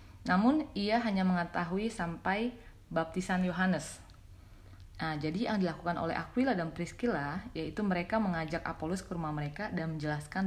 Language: Indonesian